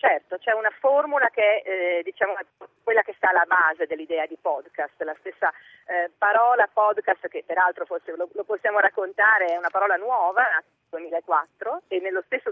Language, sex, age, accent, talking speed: Italian, female, 40-59, native, 180 wpm